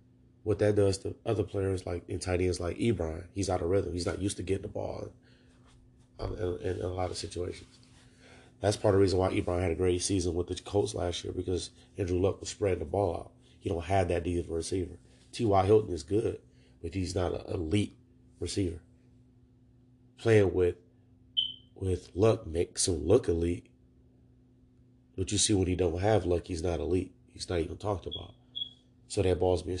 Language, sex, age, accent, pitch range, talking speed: English, male, 30-49, American, 85-120 Hz, 200 wpm